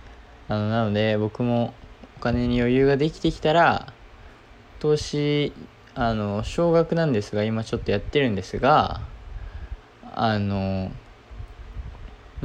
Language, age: Japanese, 20-39